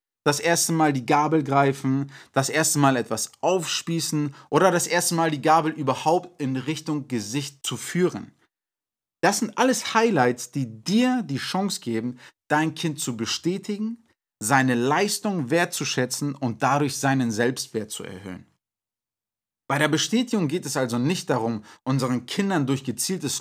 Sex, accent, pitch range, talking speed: male, German, 125-165 Hz, 145 wpm